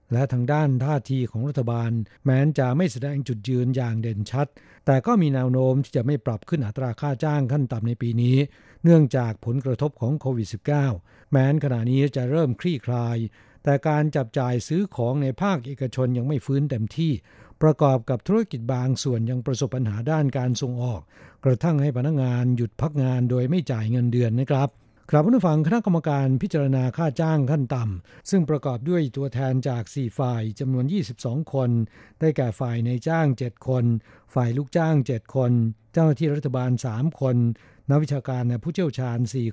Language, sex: Thai, male